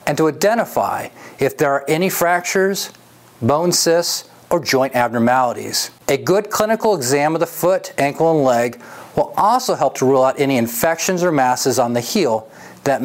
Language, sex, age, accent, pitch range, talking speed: English, male, 40-59, American, 130-170 Hz, 170 wpm